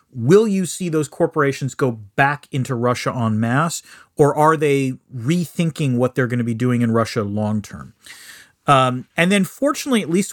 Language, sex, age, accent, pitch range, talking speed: English, male, 40-59, American, 120-165 Hz, 180 wpm